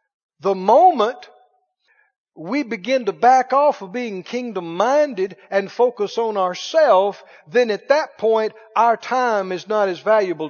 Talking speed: 135 wpm